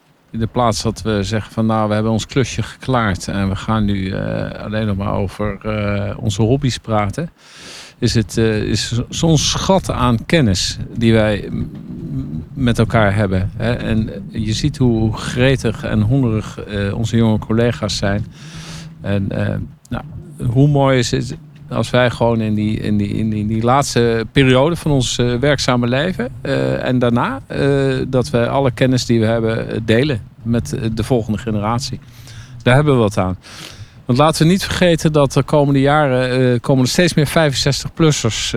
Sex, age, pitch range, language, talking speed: male, 50-69, 110-140 Hz, Dutch, 170 wpm